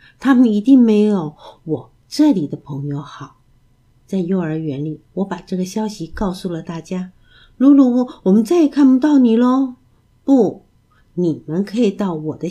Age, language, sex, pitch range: 50-69, Chinese, female, 155-230 Hz